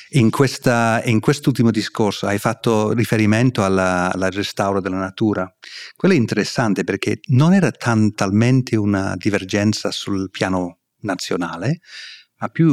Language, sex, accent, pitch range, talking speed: Italian, male, native, 95-120 Hz, 125 wpm